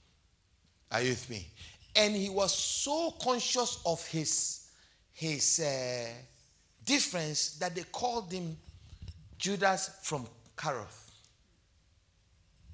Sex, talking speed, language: male, 100 wpm, English